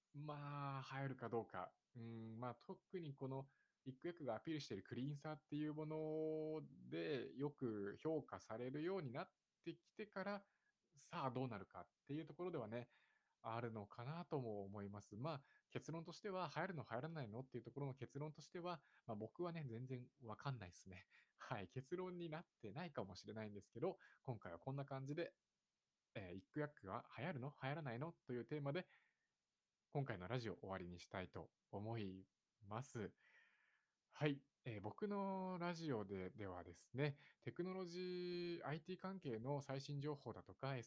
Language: Japanese